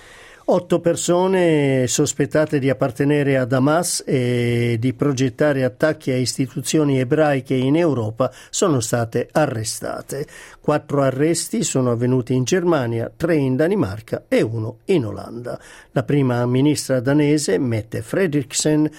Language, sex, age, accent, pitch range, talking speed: Italian, male, 50-69, native, 125-155 Hz, 120 wpm